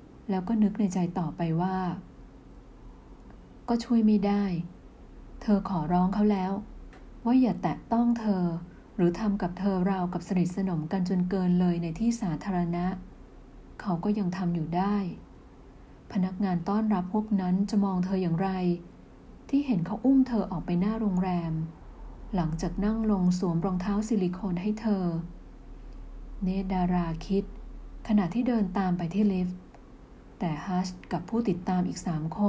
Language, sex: Thai, female